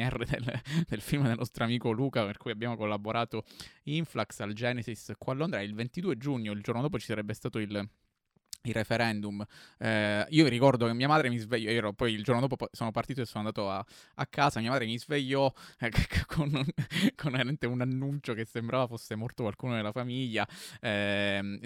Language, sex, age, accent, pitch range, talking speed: Italian, male, 20-39, native, 105-125 Hz, 190 wpm